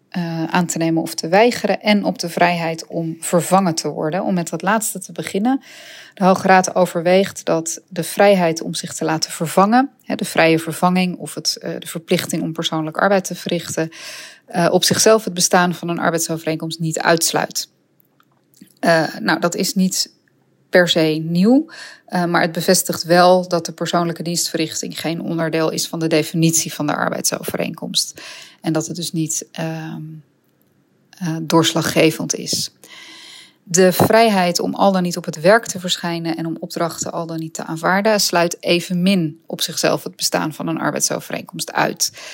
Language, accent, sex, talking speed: English, Dutch, female, 165 wpm